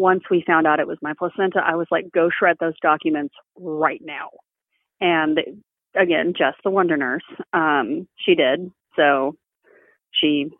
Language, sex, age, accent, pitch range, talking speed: English, female, 30-49, American, 165-245 Hz, 160 wpm